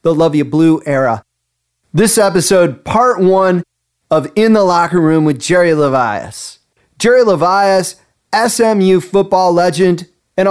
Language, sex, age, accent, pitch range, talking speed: English, male, 30-49, American, 155-195 Hz, 130 wpm